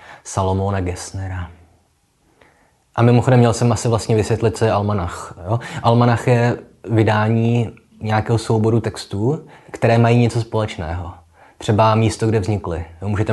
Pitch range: 90-110 Hz